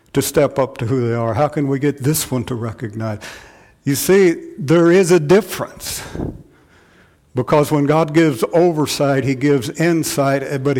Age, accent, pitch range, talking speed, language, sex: 50-69, American, 130-165 Hz, 165 wpm, English, male